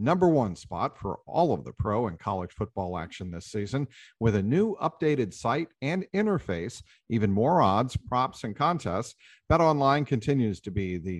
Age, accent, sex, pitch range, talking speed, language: 50-69, American, male, 110-140 Hz, 175 wpm, English